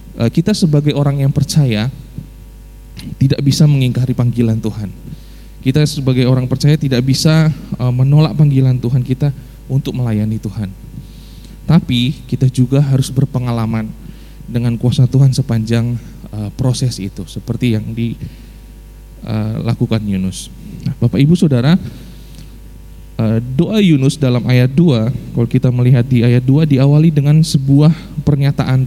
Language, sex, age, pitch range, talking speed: Indonesian, male, 20-39, 120-150 Hz, 120 wpm